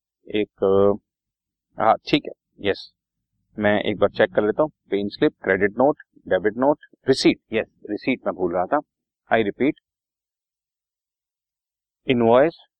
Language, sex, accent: Hindi, male, native